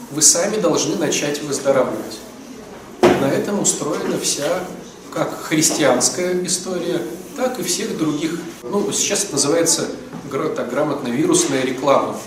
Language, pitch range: Russian, 155-205 Hz